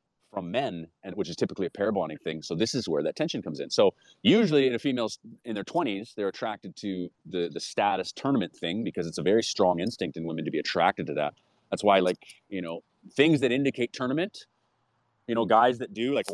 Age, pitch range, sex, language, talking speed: 30-49, 115-150 Hz, male, English, 230 wpm